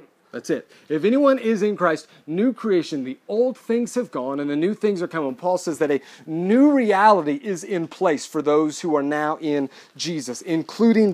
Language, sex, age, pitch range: English, male, 30-49, 130-175 Hz